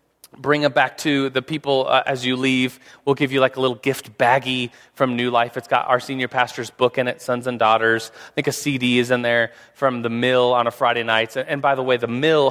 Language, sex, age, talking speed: English, male, 30-49, 255 wpm